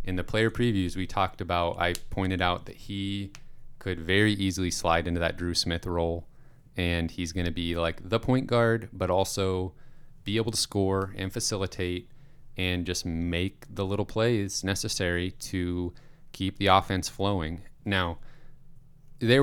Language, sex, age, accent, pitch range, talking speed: English, male, 30-49, American, 90-125 Hz, 160 wpm